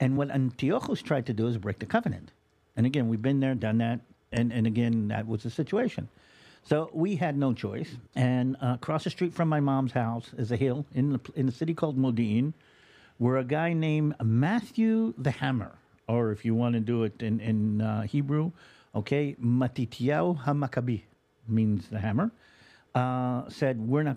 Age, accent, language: 50-69, American, English